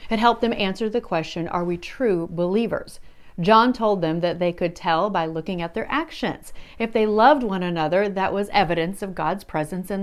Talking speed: 205 wpm